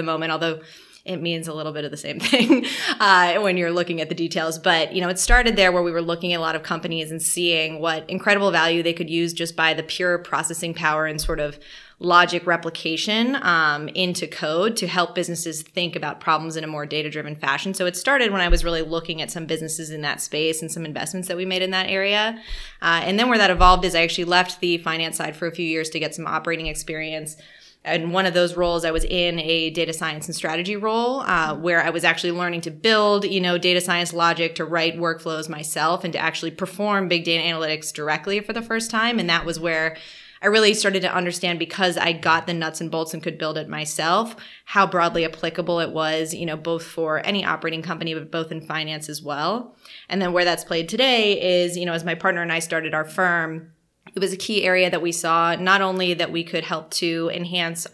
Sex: female